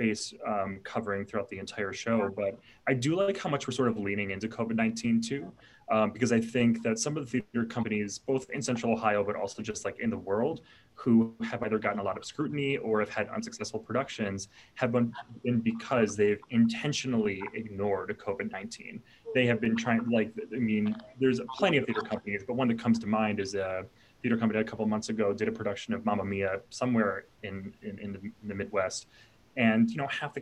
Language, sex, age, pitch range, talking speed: English, male, 20-39, 105-130 Hz, 210 wpm